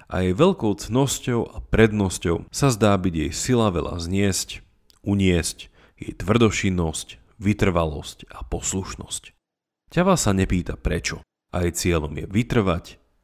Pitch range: 85-115 Hz